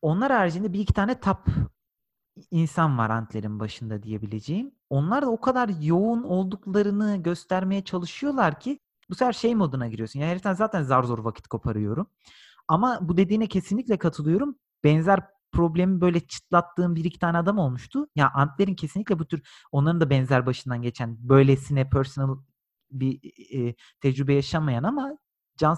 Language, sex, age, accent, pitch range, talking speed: Turkish, male, 40-59, native, 135-180 Hz, 150 wpm